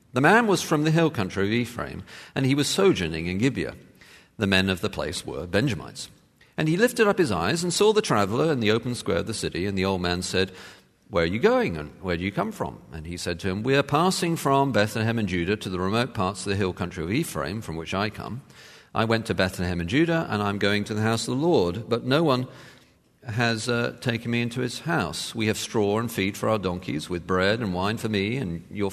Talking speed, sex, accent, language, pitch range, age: 250 wpm, male, British, English, 95-145 Hz, 40-59